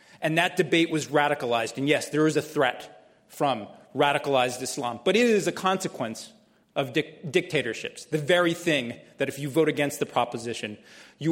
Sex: male